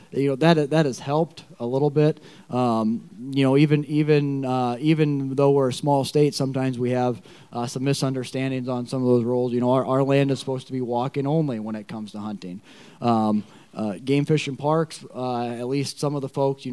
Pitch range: 125-150 Hz